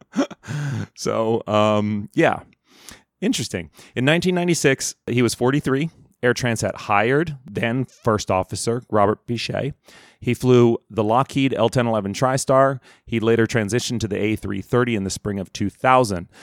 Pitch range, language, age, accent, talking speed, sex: 100-125 Hz, English, 30-49, American, 125 wpm, male